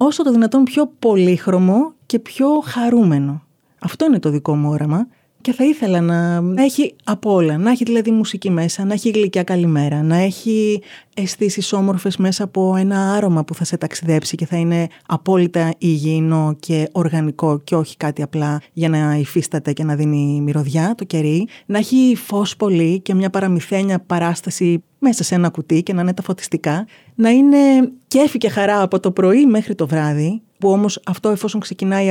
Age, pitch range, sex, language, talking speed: 20-39, 165-230 Hz, female, Greek, 180 wpm